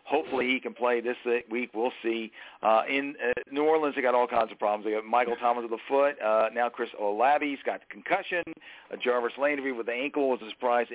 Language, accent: English, American